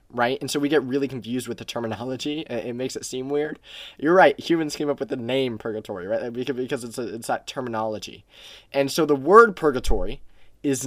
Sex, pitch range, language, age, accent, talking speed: male, 115-145 Hz, English, 20-39, American, 205 wpm